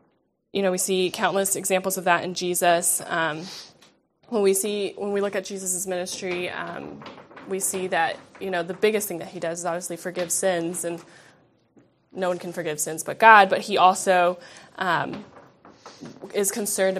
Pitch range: 170-190 Hz